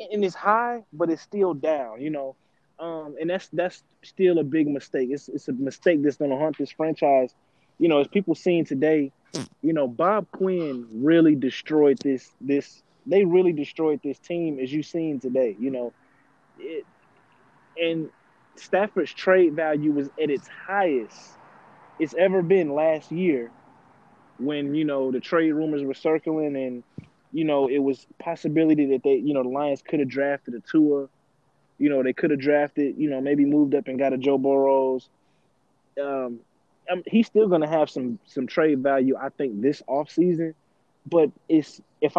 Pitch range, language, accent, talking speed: 135-165 Hz, English, American, 175 wpm